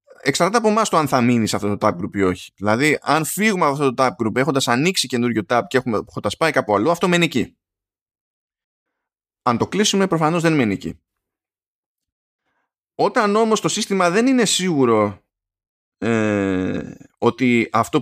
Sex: male